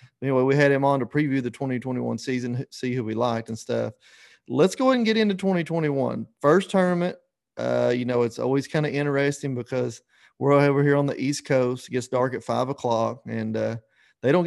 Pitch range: 120-145 Hz